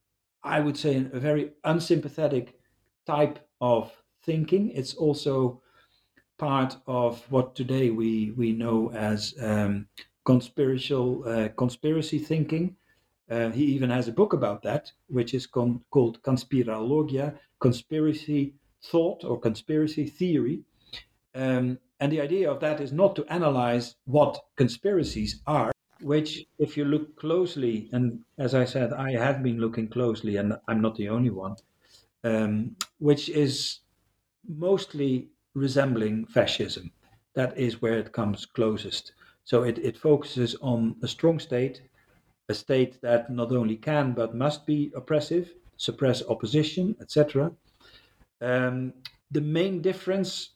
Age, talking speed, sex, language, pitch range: 50-69, 130 wpm, male, English, 115-150 Hz